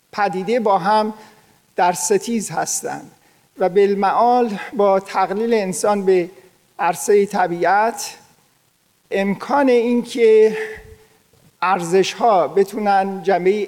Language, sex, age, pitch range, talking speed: Persian, male, 50-69, 180-215 Hz, 85 wpm